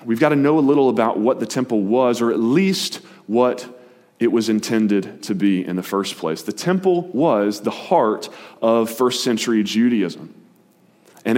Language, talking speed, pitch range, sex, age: English, 180 wpm, 120-160 Hz, male, 30-49